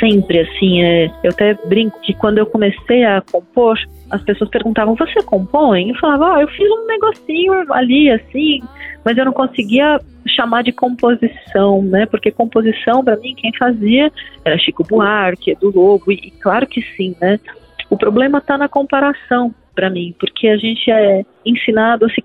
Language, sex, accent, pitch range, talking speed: Portuguese, female, Brazilian, 205-255 Hz, 175 wpm